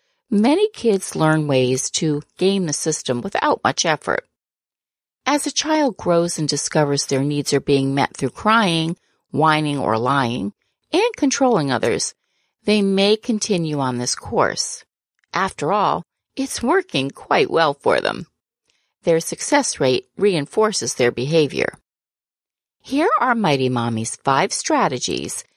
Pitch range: 145-230 Hz